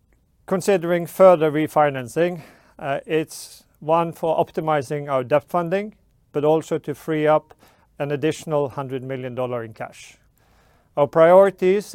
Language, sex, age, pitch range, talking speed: English, male, 40-59, 135-165 Hz, 125 wpm